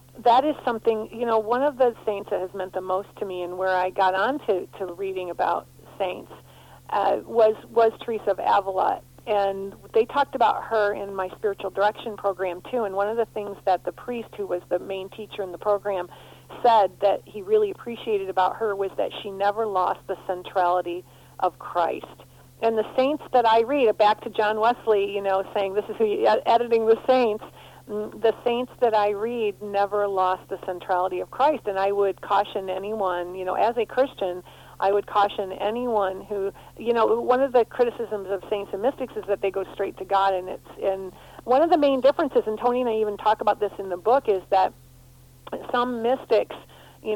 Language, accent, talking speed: English, American, 205 wpm